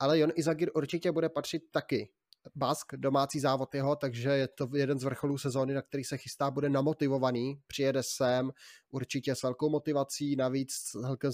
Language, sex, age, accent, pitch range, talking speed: Czech, male, 20-39, native, 135-155 Hz, 175 wpm